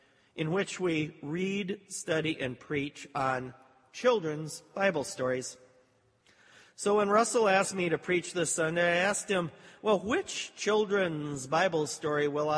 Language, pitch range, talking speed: English, 130-165 Hz, 140 wpm